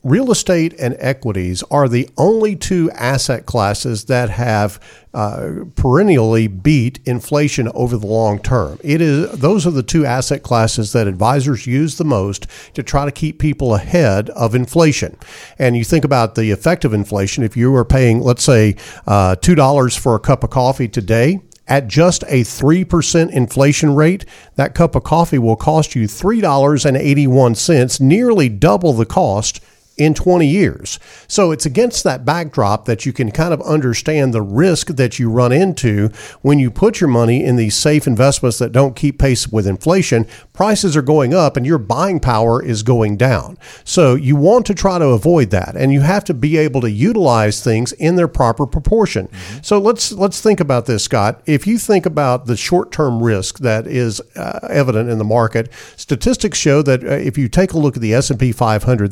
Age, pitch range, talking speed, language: 50-69, 115-155 Hz, 185 wpm, English